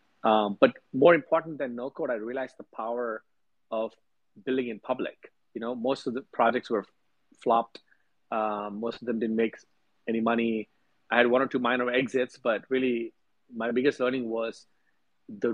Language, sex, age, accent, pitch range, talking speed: Hebrew, male, 30-49, Indian, 115-125 Hz, 180 wpm